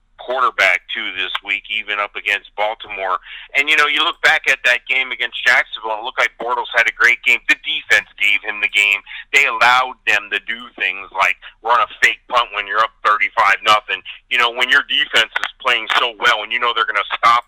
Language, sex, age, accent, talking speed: English, male, 40-59, American, 225 wpm